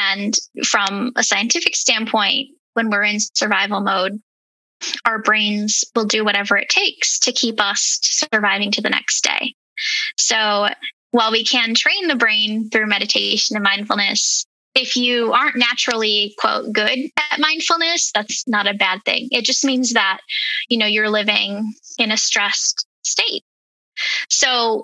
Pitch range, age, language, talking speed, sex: 210-260 Hz, 10-29, English, 150 wpm, female